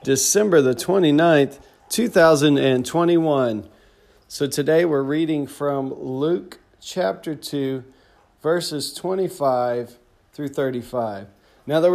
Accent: American